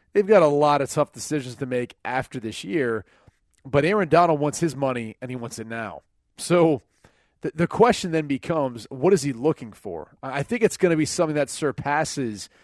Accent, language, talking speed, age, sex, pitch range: American, English, 205 wpm, 30-49, male, 125-150 Hz